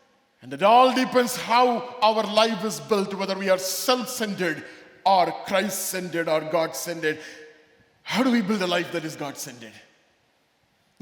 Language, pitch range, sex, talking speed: English, 170-250 Hz, male, 145 wpm